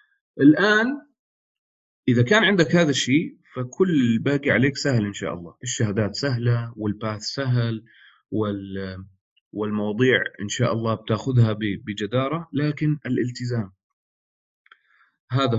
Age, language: 40-59, English